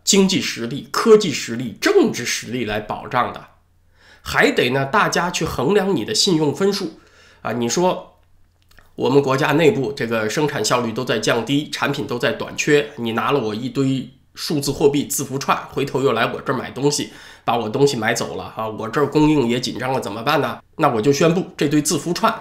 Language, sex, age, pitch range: Chinese, male, 20-39, 115-165 Hz